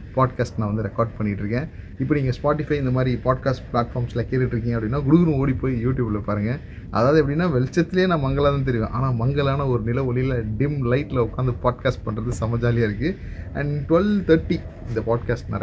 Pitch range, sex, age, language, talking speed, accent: 110-140 Hz, male, 30-49, Tamil, 155 wpm, native